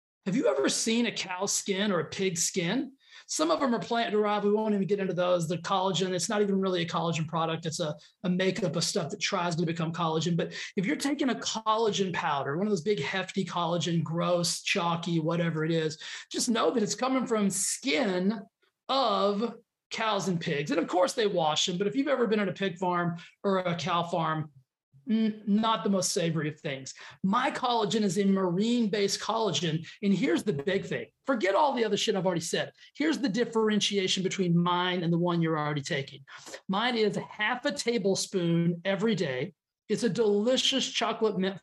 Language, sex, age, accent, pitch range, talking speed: English, male, 30-49, American, 175-220 Hz, 200 wpm